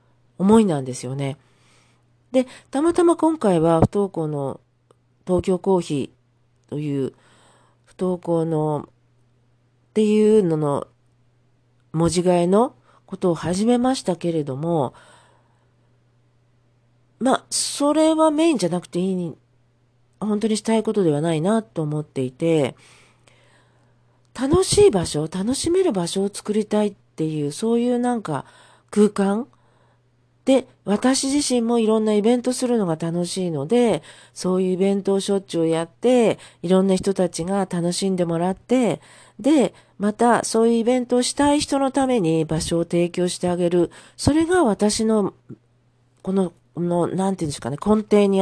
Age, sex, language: 40-59, female, Japanese